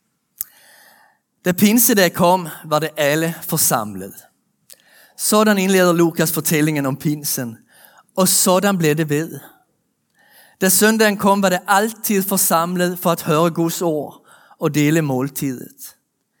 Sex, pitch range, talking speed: male, 155-190 Hz, 120 wpm